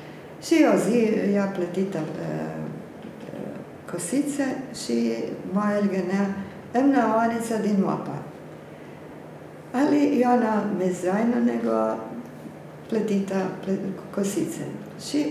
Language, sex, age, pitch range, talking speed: Croatian, female, 50-69, 170-220 Hz, 100 wpm